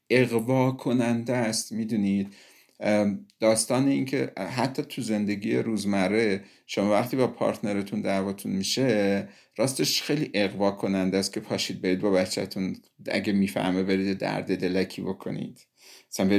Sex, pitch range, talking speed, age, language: male, 100-125 Hz, 125 wpm, 50-69, Persian